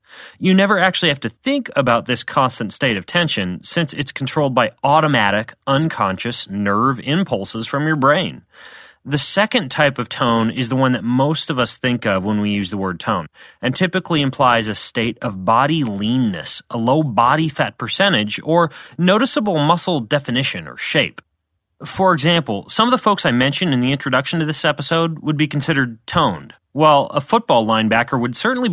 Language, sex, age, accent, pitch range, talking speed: English, male, 30-49, American, 120-170 Hz, 180 wpm